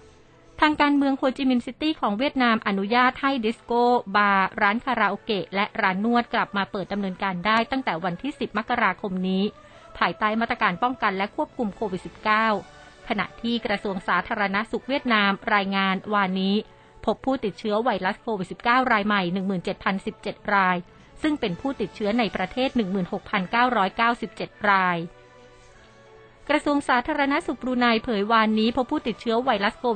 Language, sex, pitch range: Thai, female, 195-240 Hz